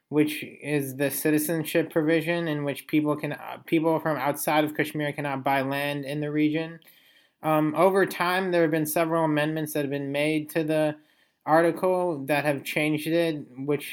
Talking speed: 175 wpm